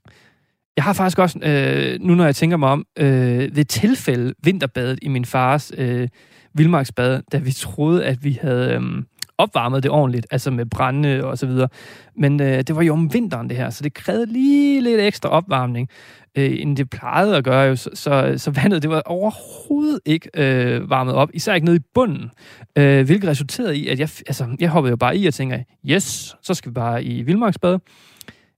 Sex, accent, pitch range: male, native, 130-175 Hz